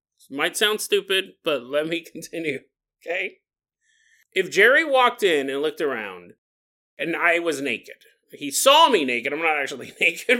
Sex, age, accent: male, 30-49, American